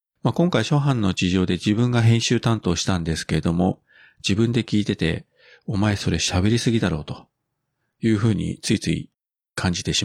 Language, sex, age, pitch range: Japanese, male, 40-59, 90-125 Hz